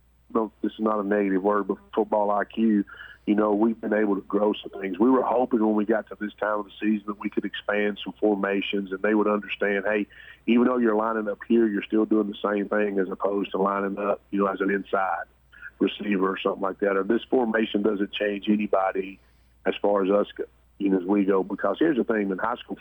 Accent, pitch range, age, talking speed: American, 100-110 Hz, 40-59, 240 wpm